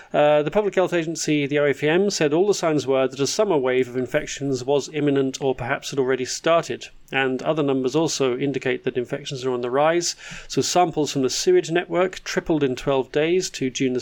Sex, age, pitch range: male, 30-49, 130-160 Hz